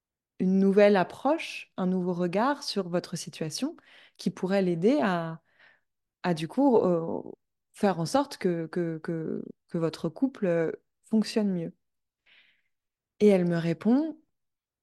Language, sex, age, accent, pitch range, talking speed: French, female, 20-39, French, 180-220 Hz, 130 wpm